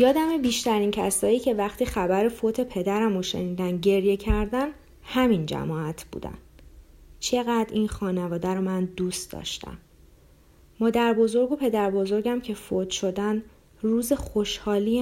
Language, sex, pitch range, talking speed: English, female, 185-215 Hz, 130 wpm